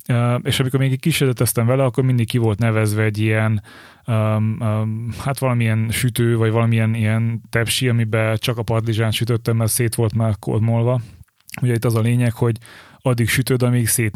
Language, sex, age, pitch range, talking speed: Hungarian, male, 30-49, 110-125 Hz, 180 wpm